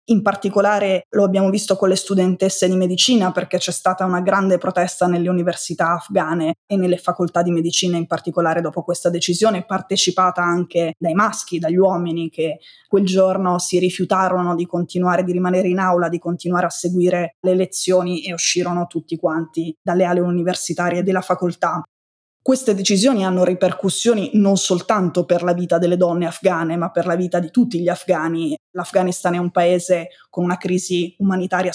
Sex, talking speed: female, 170 wpm